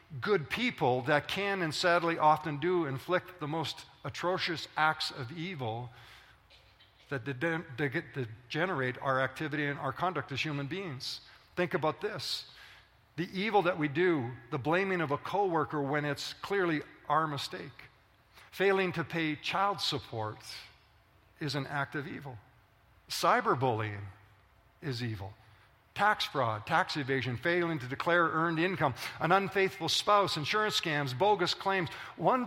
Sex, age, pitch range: male, 50-69, 130-185 Hz